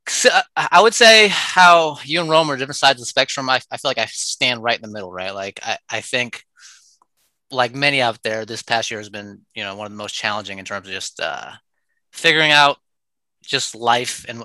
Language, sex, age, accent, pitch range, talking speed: English, male, 20-39, American, 110-140 Hz, 225 wpm